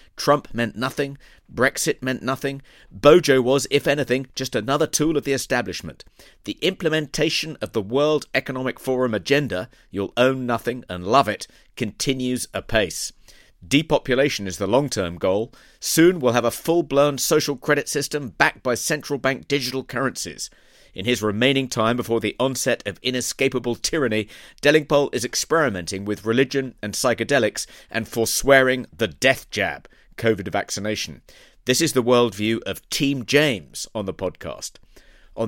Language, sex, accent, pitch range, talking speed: English, male, British, 105-140 Hz, 145 wpm